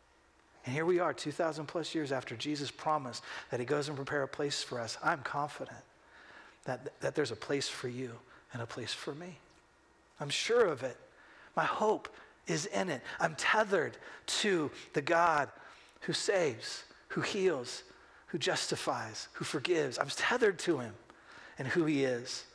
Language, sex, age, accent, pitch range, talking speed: English, male, 40-59, American, 140-180 Hz, 170 wpm